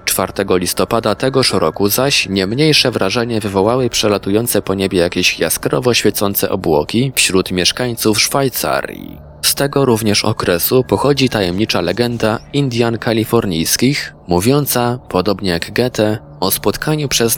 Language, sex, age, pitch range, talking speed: Polish, male, 20-39, 95-125 Hz, 120 wpm